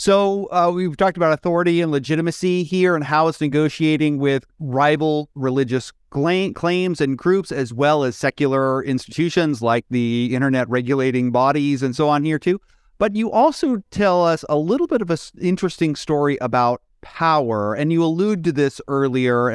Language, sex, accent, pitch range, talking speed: English, male, American, 135-170 Hz, 165 wpm